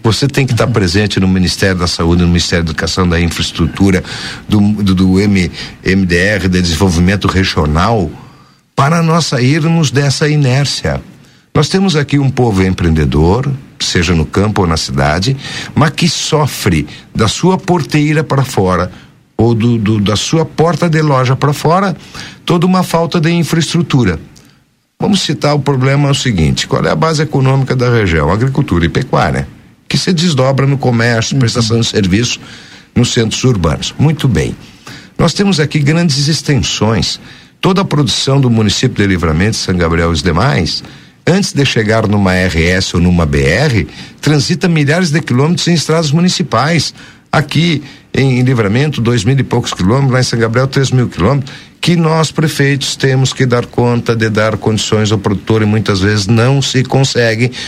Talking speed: 165 wpm